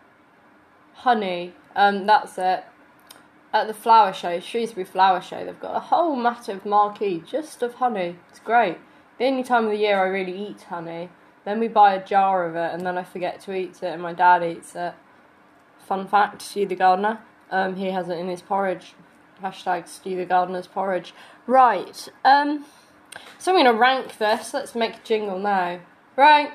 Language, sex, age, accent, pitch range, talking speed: English, female, 10-29, British, 195-270 Hz, 190 wpm